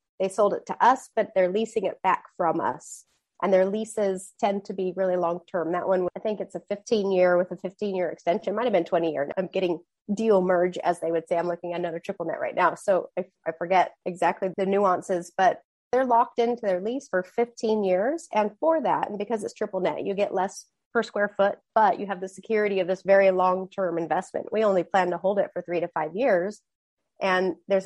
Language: English